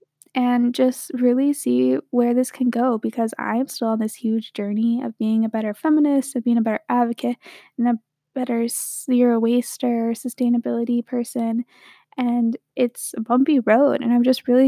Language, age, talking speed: English, 10-29, 170 wpm